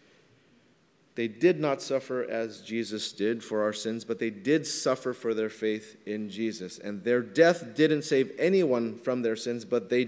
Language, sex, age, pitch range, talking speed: English, male, 30-49, 135-195 Hz, 180 wpm